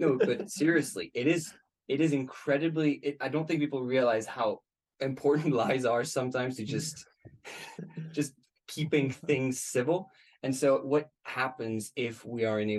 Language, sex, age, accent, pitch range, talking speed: English, male, 20-39, American, 110-140 Hz, 160 wpm